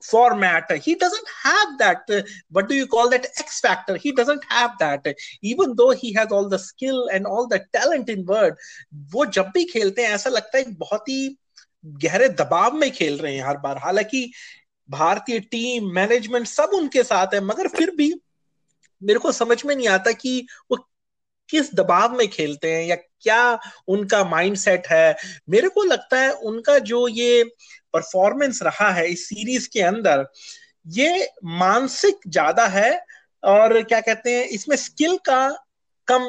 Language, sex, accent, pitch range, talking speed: Hindi, male, native, 190-255 Hz, 175 wpm